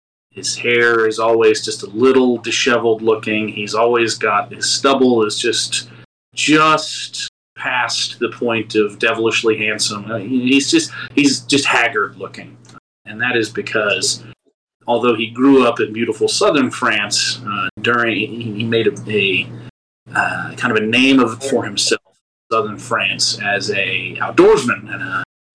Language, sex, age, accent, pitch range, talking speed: English, male, 30-49, American, 110-135 Hz, 150 wpm